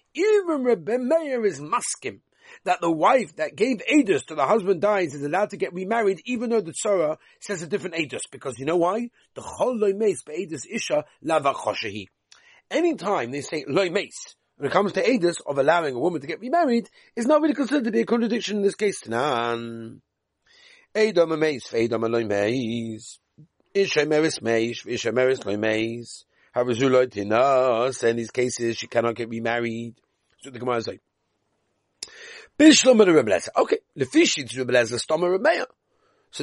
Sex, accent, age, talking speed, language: male, British, 40-59, 155 wpm, English